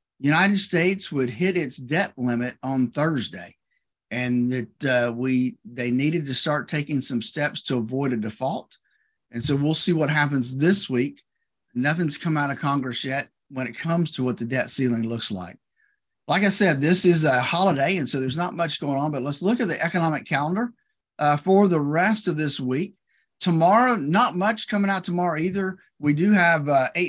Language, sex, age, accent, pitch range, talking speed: English, male, 50-69, American, 135-175 Hz, 195 wpm